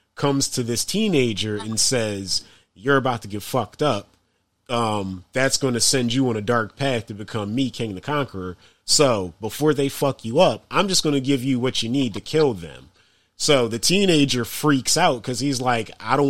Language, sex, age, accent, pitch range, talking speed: English, male, 30-49, American, 105-130 Hz, 205 wpm